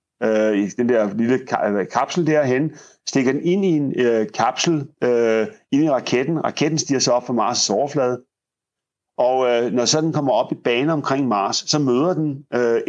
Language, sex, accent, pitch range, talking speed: Danish, male, native, 120-150 Hz, 180 wpm